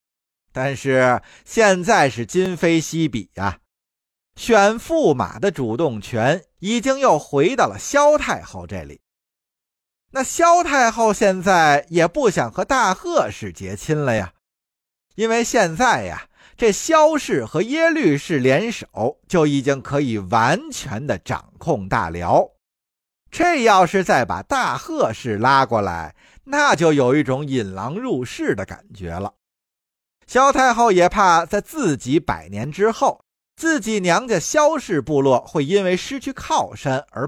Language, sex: Chinese, male